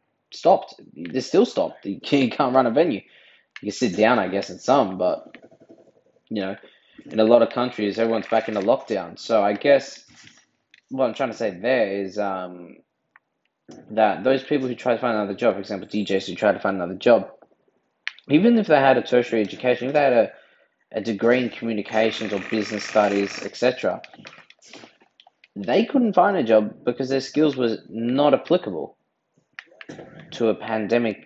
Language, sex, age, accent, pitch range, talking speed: English, male, 20-39, Australian, 100-120 Hz, 180 wpm